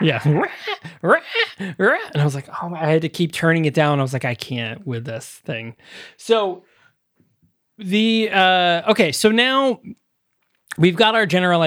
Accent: American